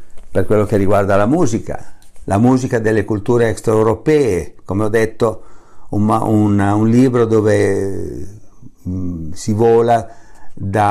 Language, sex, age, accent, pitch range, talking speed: Italian, male, 50-69, native, 100-120 Hz, 120 wpm